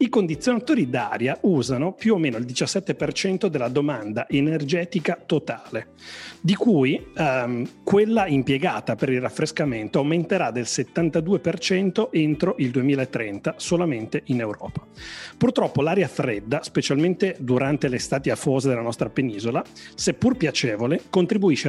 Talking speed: 120 wpm